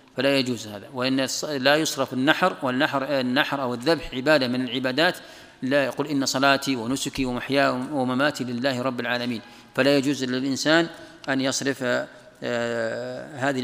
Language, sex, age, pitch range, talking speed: Arabic, male, 40-59, 125-155 Hz, 130 wpm